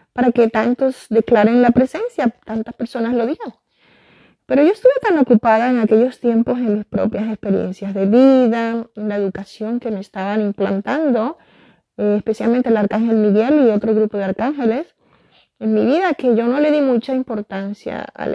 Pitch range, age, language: 210-270 Hz, 30-49, Spanish